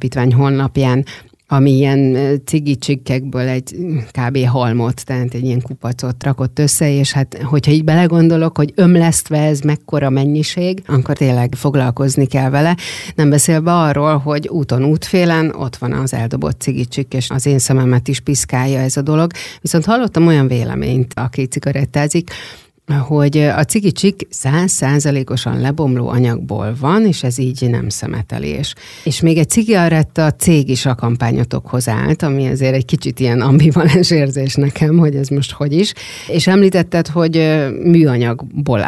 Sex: female